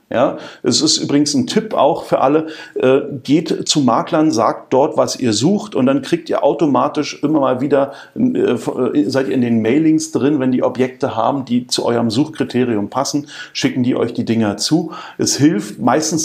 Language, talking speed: German, 190 wpm